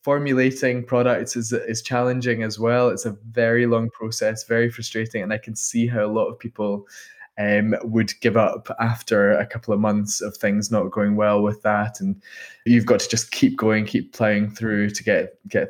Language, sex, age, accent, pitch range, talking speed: English, male, 20-39, British, 100-115 Hz, 200 wpm